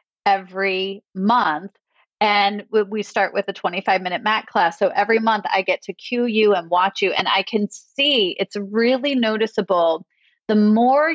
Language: English